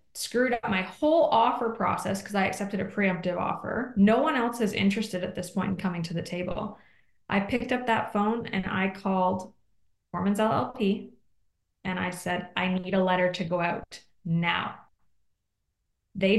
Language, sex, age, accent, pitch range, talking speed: English, female, 20-39, American, 180-215 Hz, 170 wpm